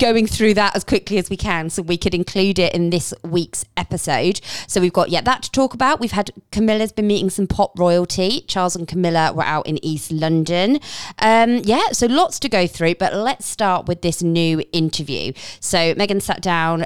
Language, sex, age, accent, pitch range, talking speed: English, female, 20-39, British, 155-210 Hz, 215 wpm